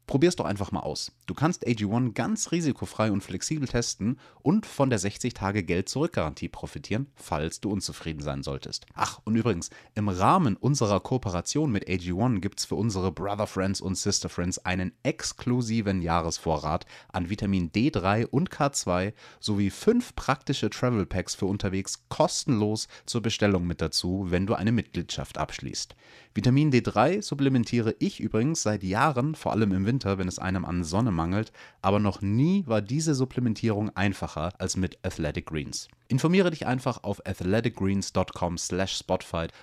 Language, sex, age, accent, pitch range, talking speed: German, male, 30-49, German, 90-125 Hz, 155 wpm